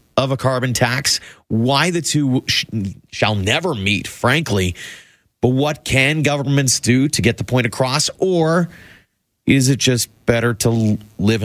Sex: male